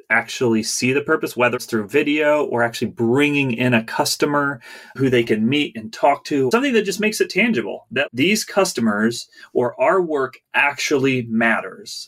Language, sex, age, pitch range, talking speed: English, male, 30-49, 115-150 Hz, 175 wpm